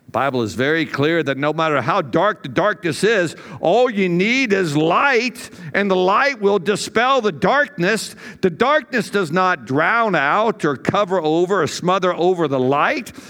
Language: English